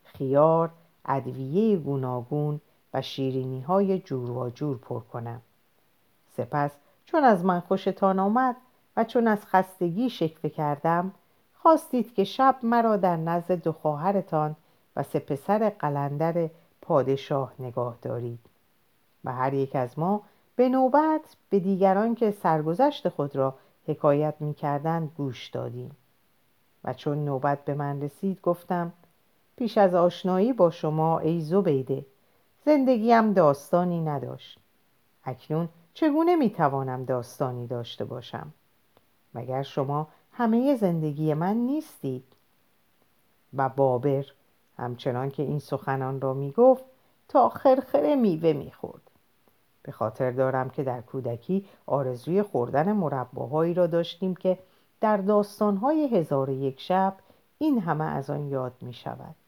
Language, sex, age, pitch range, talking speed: Persian, female, 50-69, 135-195 Hz, 115 wpm